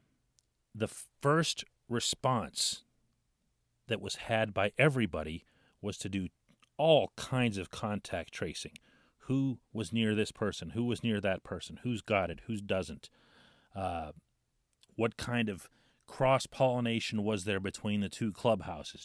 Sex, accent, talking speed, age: male, American, 130 wpm, 40-59